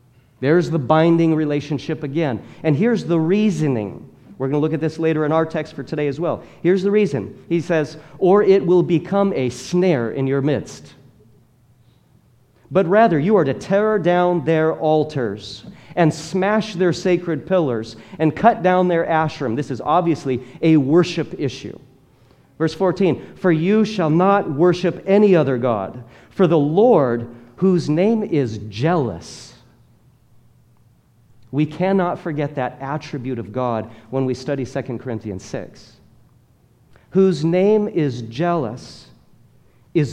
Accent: American